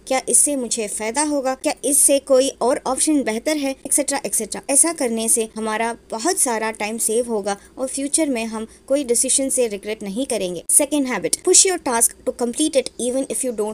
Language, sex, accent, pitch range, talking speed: Hindi, male, native, 225-275 Hz, 150 wpm